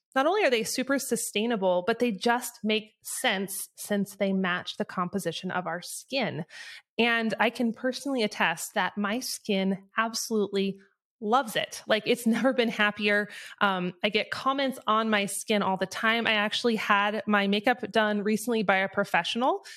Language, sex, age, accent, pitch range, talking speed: English, female, 20-39, American, 185-230 Hz, 165 wpm